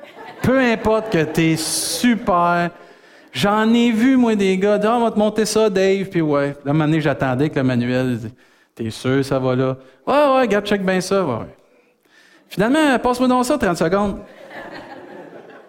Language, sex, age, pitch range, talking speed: French, male, 50-69, 130-185 Hz, 175 wpm